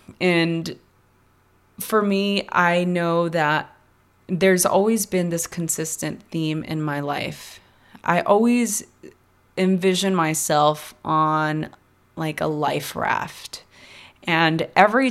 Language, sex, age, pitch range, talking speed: English, female, 20-39, 155-190 Hz, 105 wpm